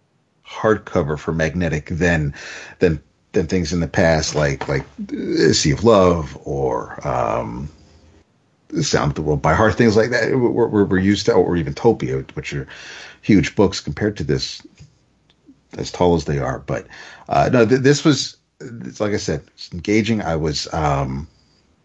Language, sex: English, male